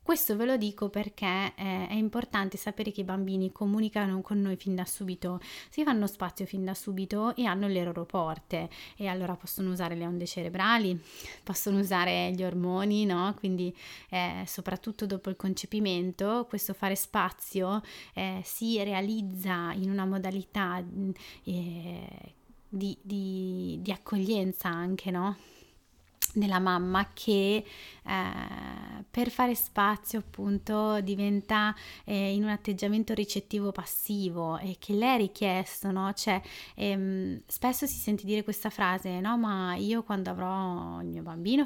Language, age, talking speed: Italian, 20-39, 145 wpm